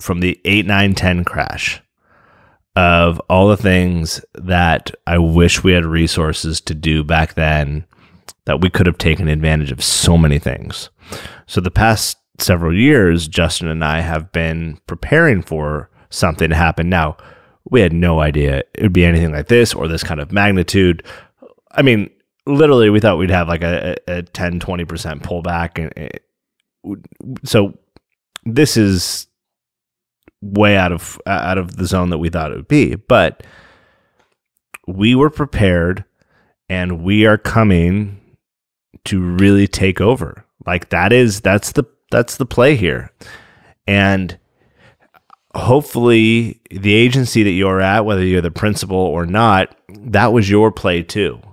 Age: 30-49